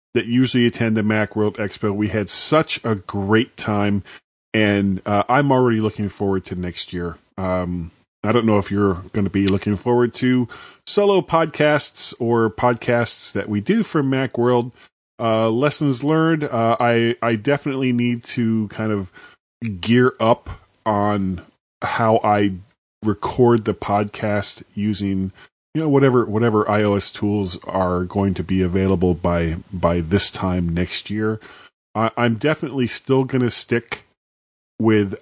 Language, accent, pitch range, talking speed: English, American, 100-125 Hz, 150 wpm